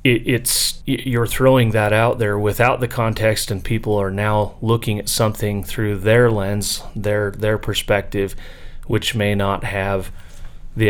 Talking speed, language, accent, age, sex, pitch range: 155 wpm, English, American, 30-49, male, 95-105 Hz